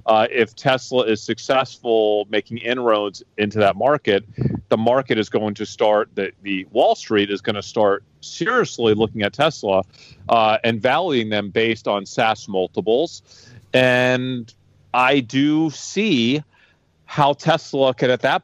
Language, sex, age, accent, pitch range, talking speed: English, male, 40-59, American, 100-125 Hz, 145 wpm